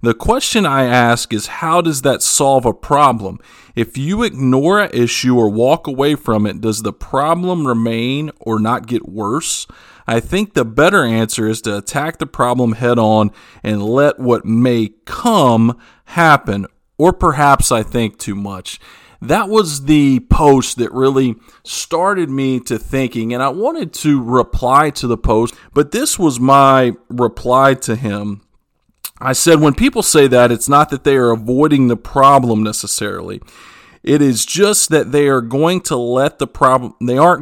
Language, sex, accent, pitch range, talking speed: English, male, American, 115-145 Hz, 170 wpm